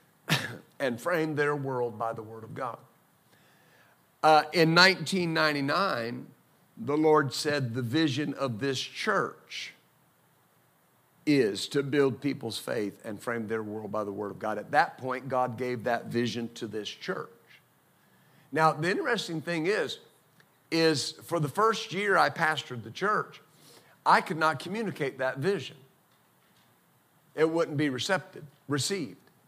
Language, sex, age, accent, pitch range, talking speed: English, male, 50-69, American, 130-165 Hz, 140 wpm